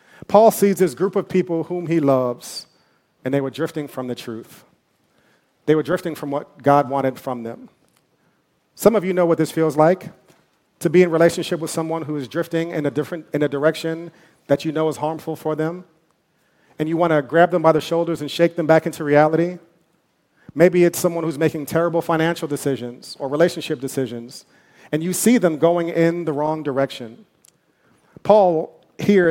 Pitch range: 140-170 Hz